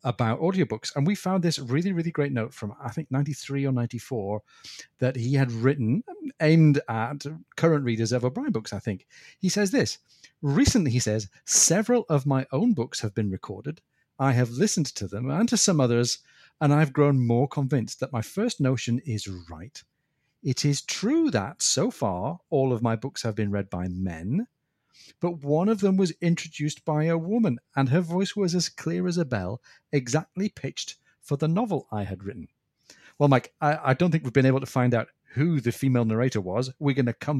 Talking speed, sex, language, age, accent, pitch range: 200 wpm, male, English, 40-59, British, 115-160 Hz